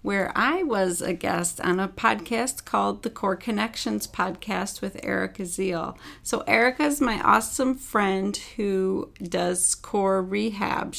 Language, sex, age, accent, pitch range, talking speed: English, female, 40-59, American, 170-225 Hz, 140 wpm